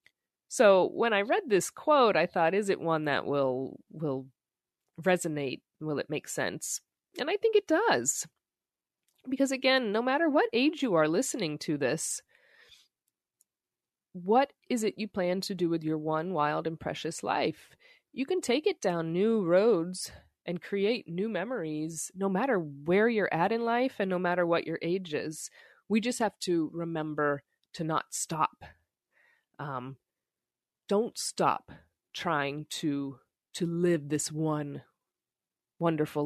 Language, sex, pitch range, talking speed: English, female, 155-215 Hz, 150 wpm